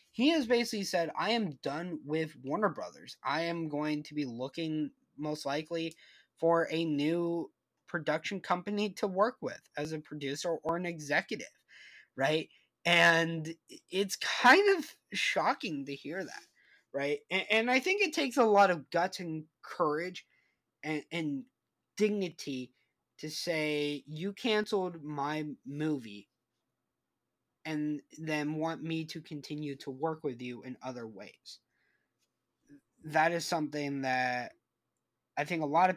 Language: English